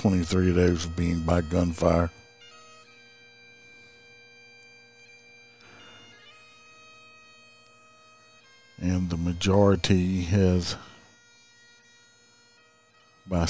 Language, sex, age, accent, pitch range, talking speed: English, male, 60-79, American, 85-120 Hz, 50 wpm